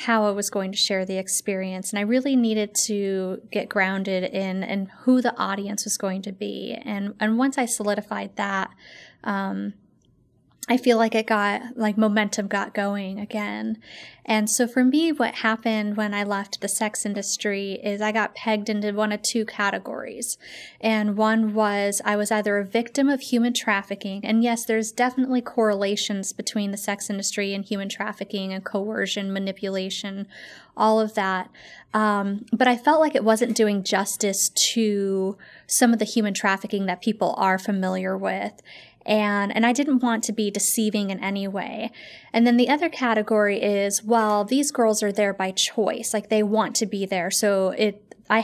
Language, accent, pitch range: English, American, 200-225 Hz